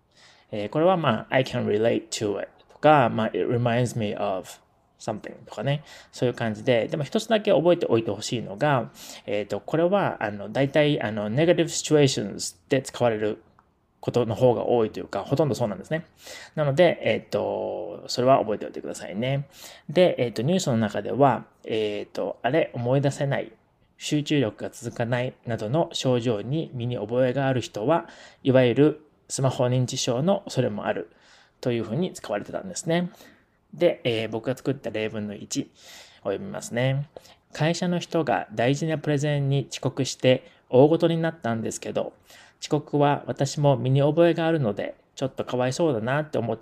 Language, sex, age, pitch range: Japanese, male, 20-39, 120-160 Hz